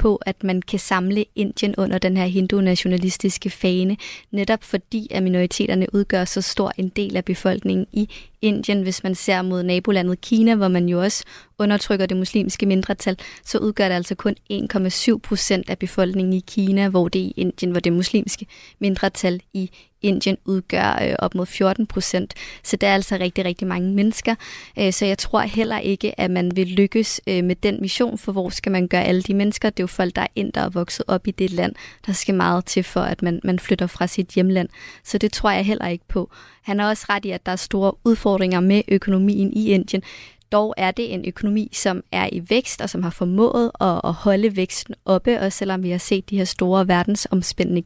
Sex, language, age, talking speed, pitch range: female, Danish, 20-39, 210 wpm, 185-210 Hz